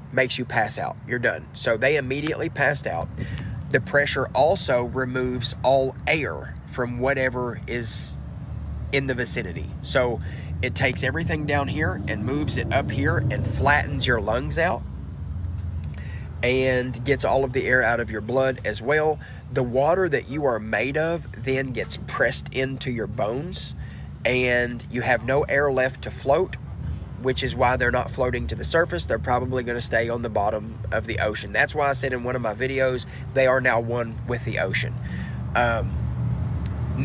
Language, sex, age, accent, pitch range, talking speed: English, male, 30-49, American, 95-130 Hz, 175 wpm